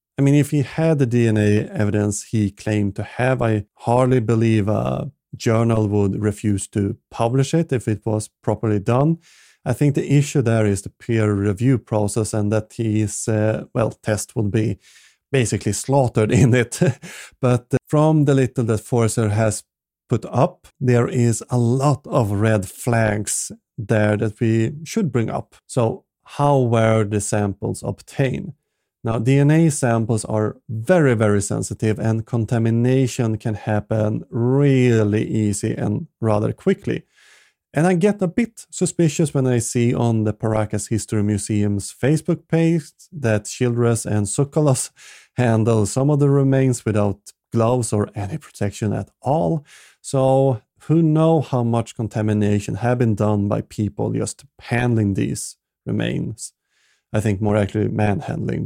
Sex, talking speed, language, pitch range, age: male, 150 wpm, English, 105-135 Hz, 30-49